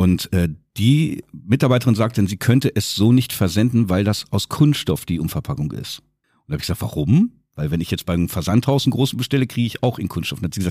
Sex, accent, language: male, German, German